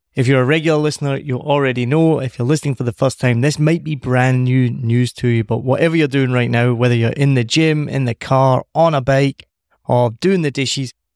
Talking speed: 235 wpm